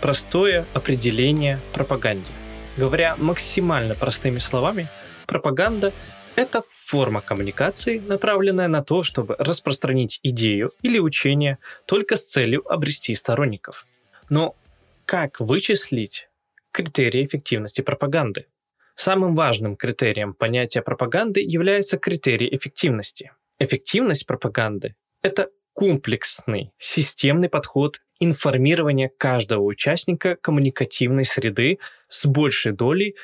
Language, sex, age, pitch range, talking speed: Russian, male, 20-39, 125-185 Hz, 95 wpm